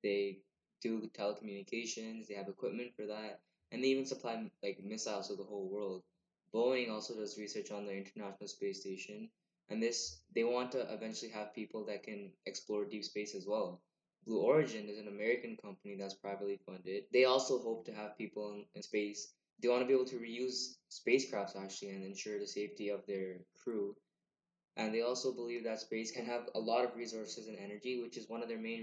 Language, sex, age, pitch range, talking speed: English, male, 10-29, 100-115 Hz, 200 wpm